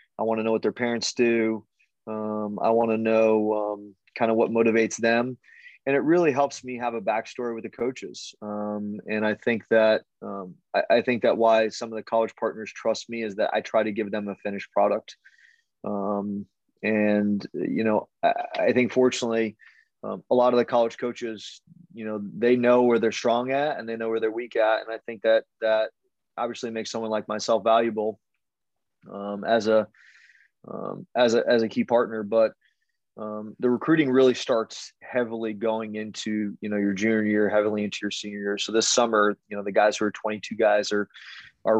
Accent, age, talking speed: American, 20-39, 200 wpm